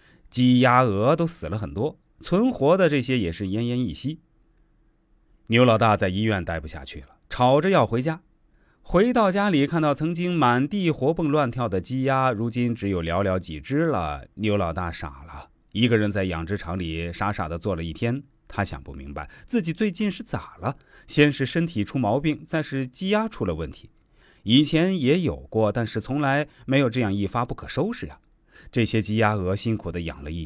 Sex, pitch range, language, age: male, 85-145 Hz, Chinese, 30-49